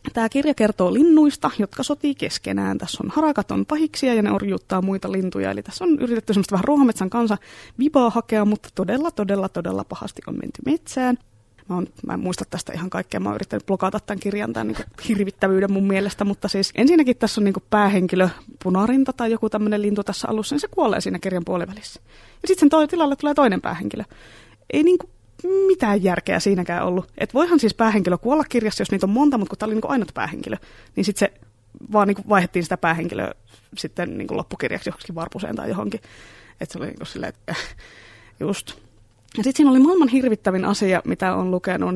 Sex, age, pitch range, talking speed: female, 20-39, 185-265 Hz, 185 wpm